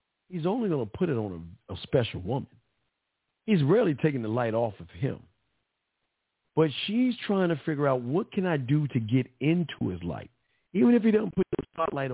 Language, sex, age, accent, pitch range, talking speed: English, male, 50-69, American, 105-145 Hz, 205 wpm